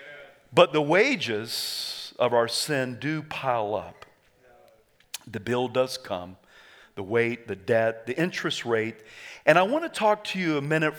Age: 50-69